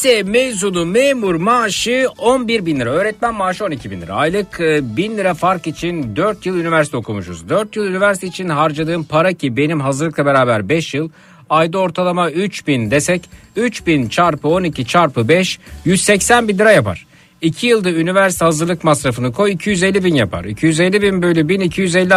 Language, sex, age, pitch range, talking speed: Turkish, male, 60-79, 145-195 Hz, 160 wpm